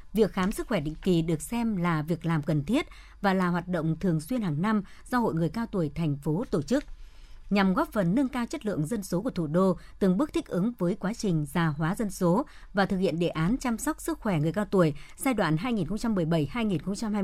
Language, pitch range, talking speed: Vietnamese, 170-220 Hz, 260 wpm